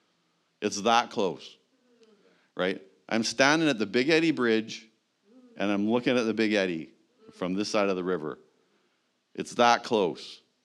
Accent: American